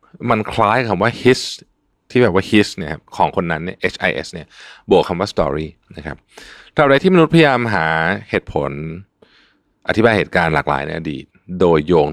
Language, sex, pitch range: Thai, male, 80-110 Hz